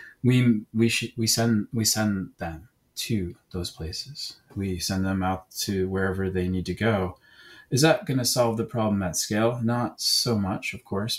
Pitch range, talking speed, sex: 95-115 Hz, 180 wpm, male